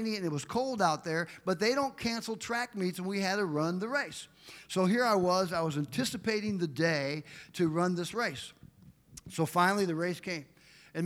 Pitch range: 175-225 Hz